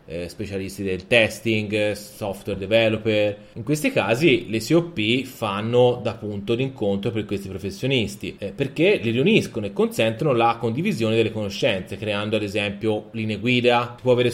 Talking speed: 155 wpm